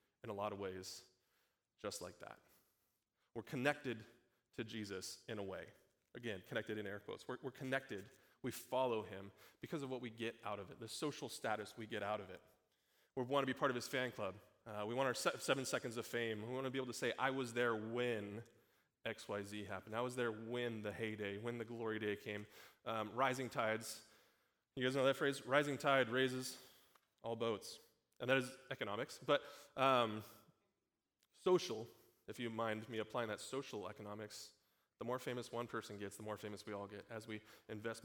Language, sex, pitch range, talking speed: English, male, 105-130 Hz, 195 wpm